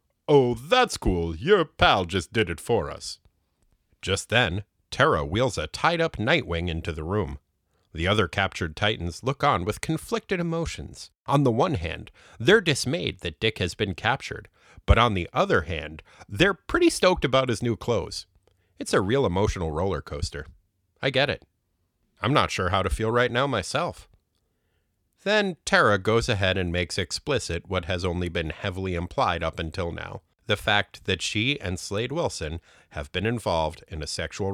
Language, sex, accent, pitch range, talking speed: English, male, American, 85-115 Hz, 175 wpm